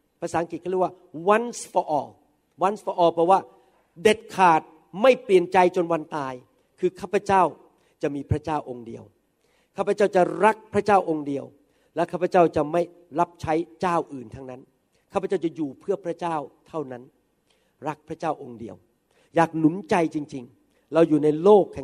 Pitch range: 155-185 Hz